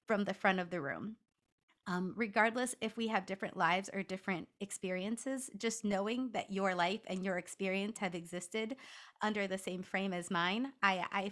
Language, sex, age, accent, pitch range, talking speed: English, female, 30-49, American, 185-230 Hz, 180 wpm